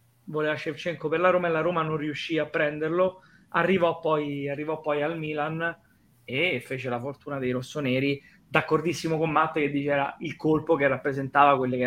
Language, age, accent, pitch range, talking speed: Italian, 20-39, native, 145-165 Hz, 175 wpm